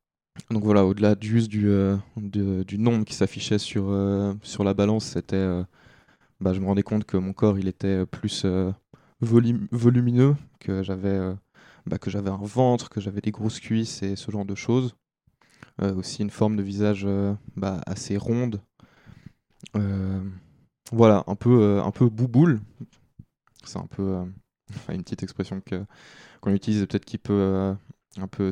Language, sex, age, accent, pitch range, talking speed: French, male, 20-39, French, 95-110 Hz, 175 wpm